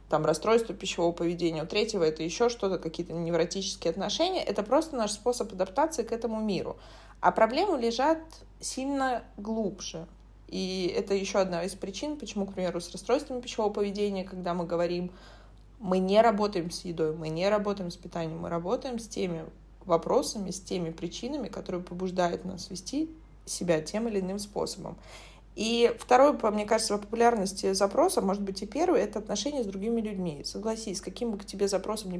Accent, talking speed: native, 170 wpm